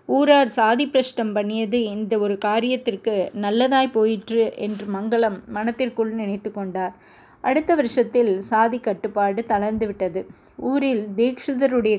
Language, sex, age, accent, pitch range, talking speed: Tamil, female, 20-39, native, 210-255 Hz, 105 wpm